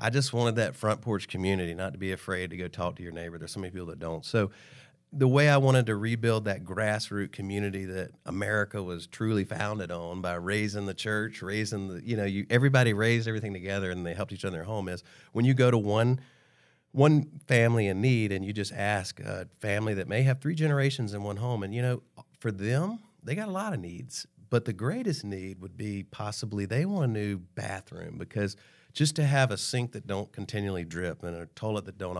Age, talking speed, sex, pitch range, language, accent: 40-59, 225 wpm, male, 95-120 Hz, English, American